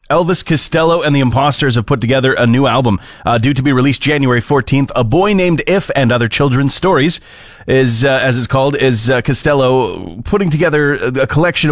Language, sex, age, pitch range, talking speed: English, male, 30-49, 120-150 Hz, 195 wpm